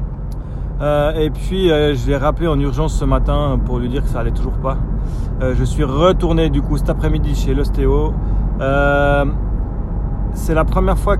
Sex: male